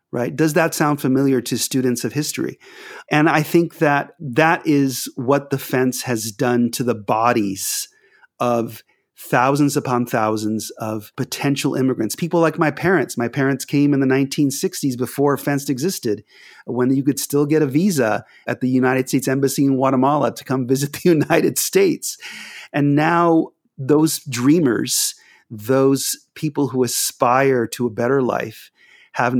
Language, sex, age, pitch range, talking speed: English, male, 30-49, 125-160 Hz, 155 wpm